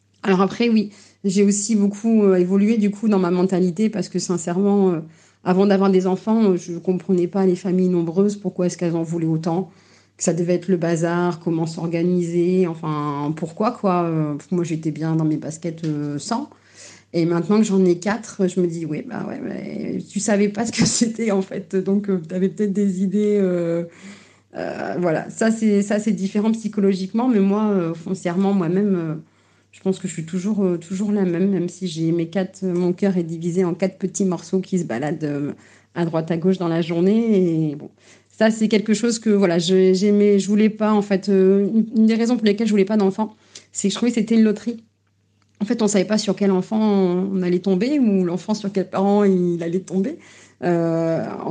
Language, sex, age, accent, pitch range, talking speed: French, female, 40-59, French, 175-205 Hz, 215 wpm